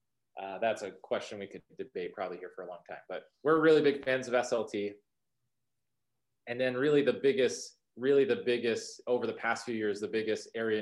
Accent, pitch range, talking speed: American, 110-140 Hz, 200 wpm